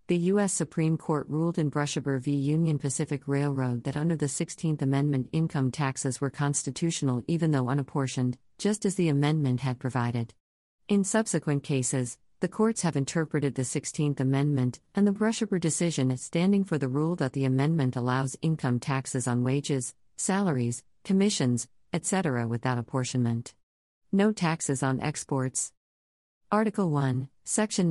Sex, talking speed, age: female, 145 wpm, 50-69